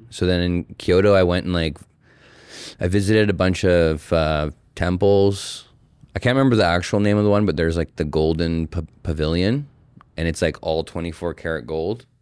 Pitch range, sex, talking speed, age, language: 85-100 Hz, male, 180 wpm, 20-39, English